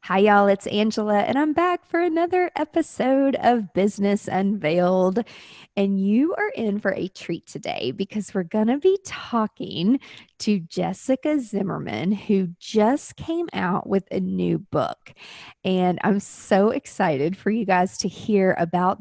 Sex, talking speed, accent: female, 150 wpm, American